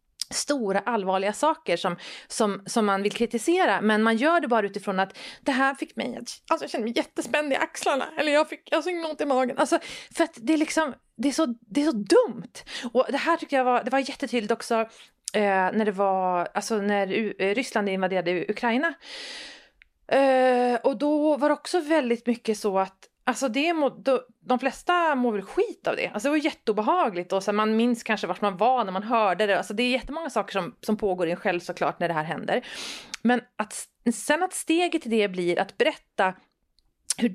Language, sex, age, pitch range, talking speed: Swedish, female, 30-49, 195-280 Hz, 205 wpm